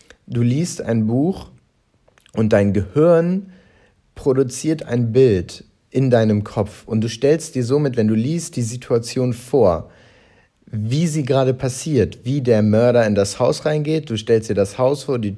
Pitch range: 105-140 Hz